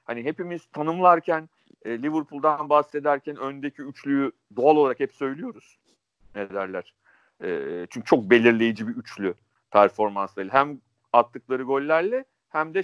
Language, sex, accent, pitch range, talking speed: Turkish, male, native, 115-160 Hz, 115 wpm